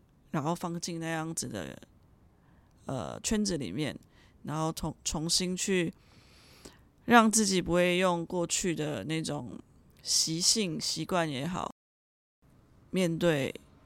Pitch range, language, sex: 150-175 Hz, Chinese, female